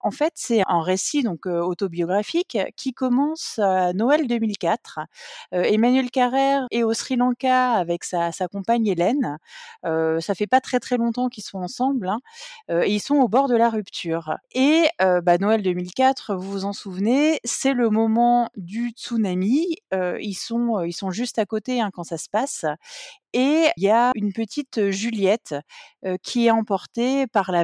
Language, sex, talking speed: French, female, 185 wpm